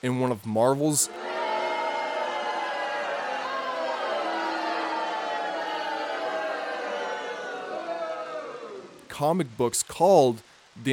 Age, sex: 20-39, male